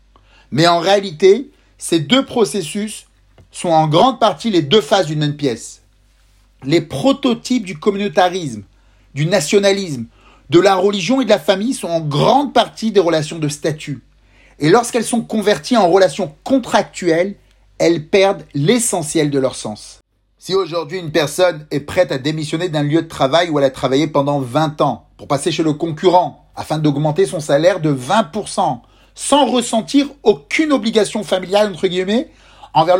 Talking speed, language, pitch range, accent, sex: 160 wpm, French, 150-205 Hz, French, male